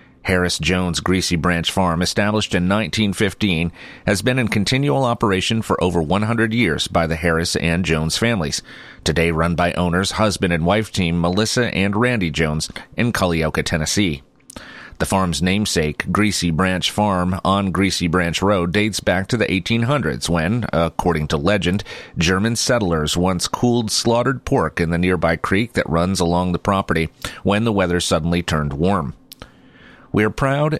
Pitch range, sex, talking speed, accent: 85-105 Hz, male, 155 wpm, American